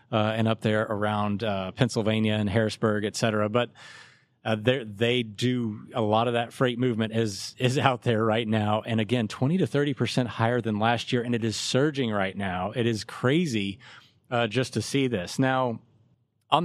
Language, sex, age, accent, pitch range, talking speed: English, male, 30-49, American, 110-130 Hz, 185 wpm